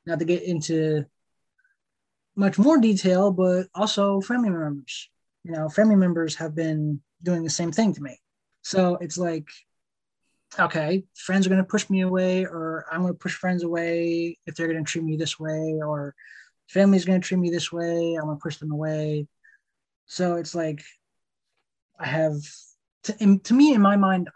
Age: 20-39